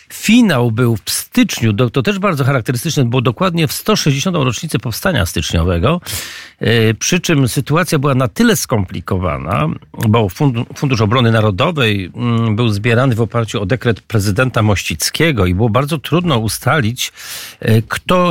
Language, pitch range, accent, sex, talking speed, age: Polish, 110-135 Hz, native, male, 130 wpm, 50-69